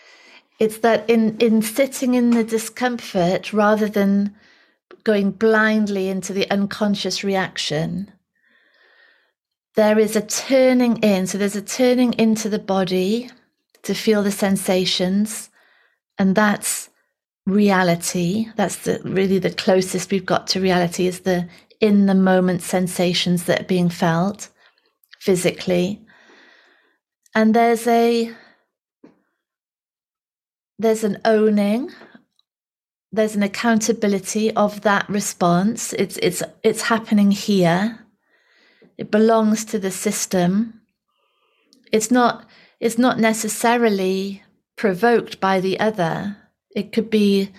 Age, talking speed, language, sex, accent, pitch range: 30-49, 110 wpm, English, female, British, 190-230 Hz